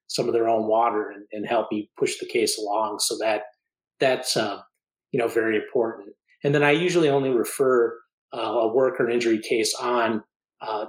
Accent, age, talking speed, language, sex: American, 30-49, 200 wpm, English, male